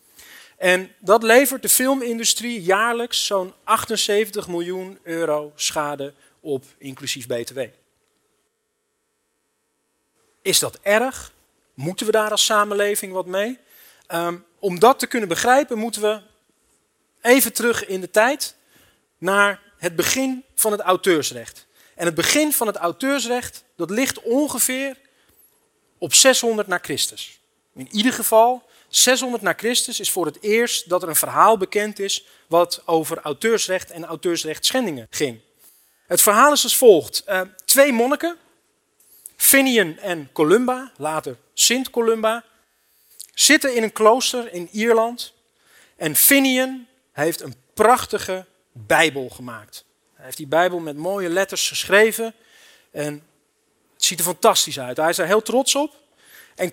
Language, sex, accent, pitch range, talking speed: Dutch, male, Dutch, 170-255 Hz, 135 wpm